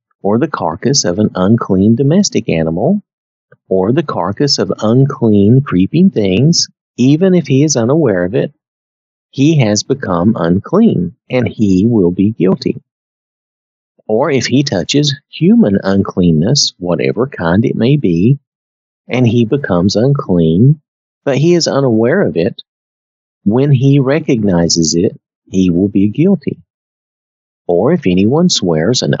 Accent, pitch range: American, 95-140 Hz